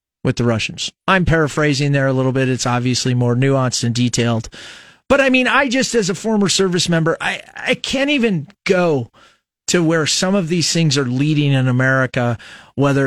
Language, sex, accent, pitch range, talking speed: English, male, American, 130-185 Hz, 190 wpm